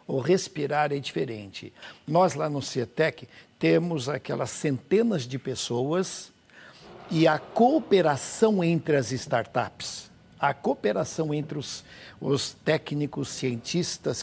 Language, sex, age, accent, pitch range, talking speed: Portuguese, male, 60-79, Brazilian, 130-175 Hz, 110 wpm